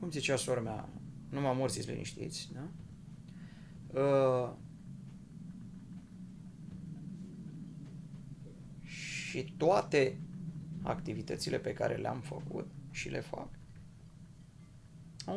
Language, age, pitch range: Romanian, 30-49, 145-175 Hz